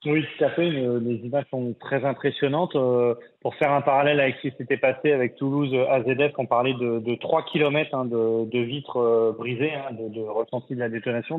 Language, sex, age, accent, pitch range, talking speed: French, male, 30-49, French, 120-140 Hz, 205 wpm